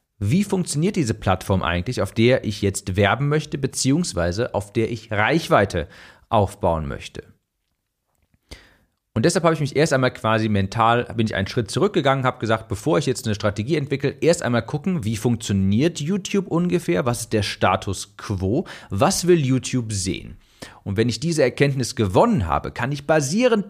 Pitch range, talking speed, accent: 105-145 Hz, 165 wpm, German